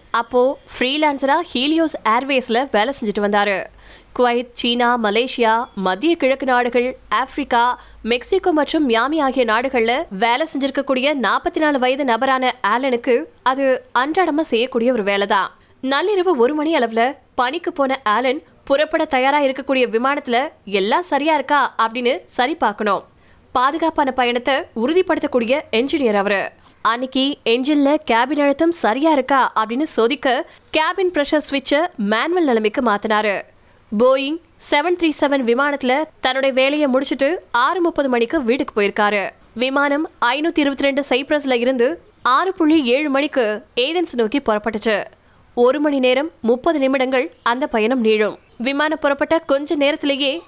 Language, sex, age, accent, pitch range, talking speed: Tamil, female, 20-39, native, 240-300 Hz, 45 wpm